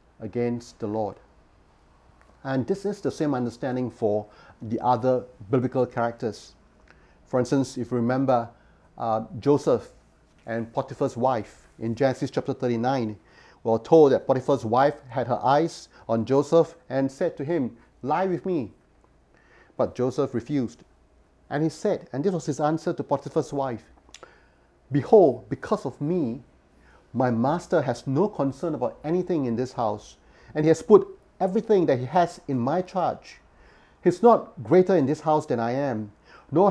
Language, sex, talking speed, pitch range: English, male, 155 wpm, 115-155 Hz